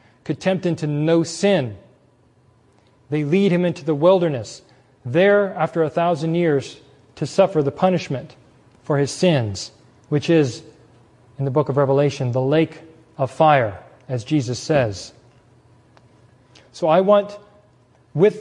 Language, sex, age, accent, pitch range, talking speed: English, male, 40-59, American, 125-170 Hz, 135 wpm